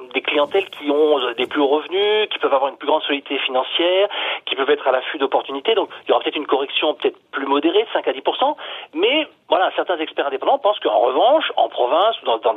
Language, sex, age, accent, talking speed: French, male, 40-59, French, 230 wpm